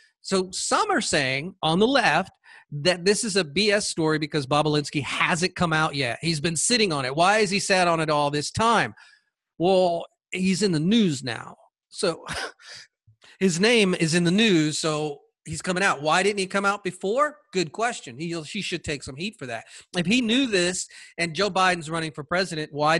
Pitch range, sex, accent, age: 150-200 Hz, male, American, 40-59